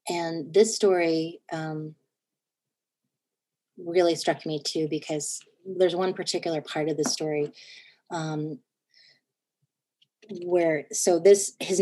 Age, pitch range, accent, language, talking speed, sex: 30-49, 160-195 Hz, American, English, 105 wpm, female